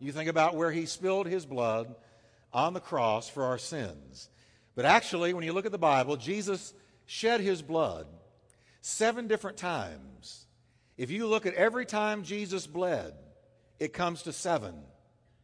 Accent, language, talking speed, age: American, English, 160 wpm, 60-79